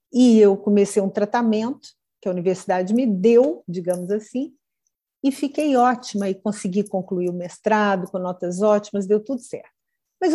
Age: 50-69